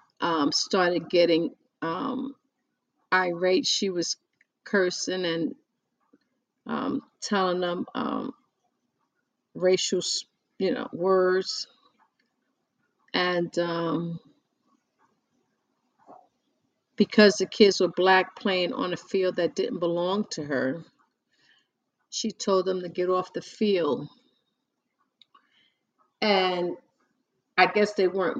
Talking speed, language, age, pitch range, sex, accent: 95 wpm, English, 50-69, 165-200 Hz, female, American